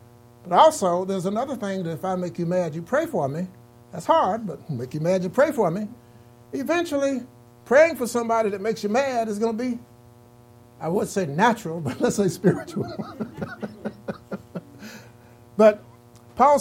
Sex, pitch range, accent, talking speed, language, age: male, 120-200 Hz, American, 170 wpm, English, 60-79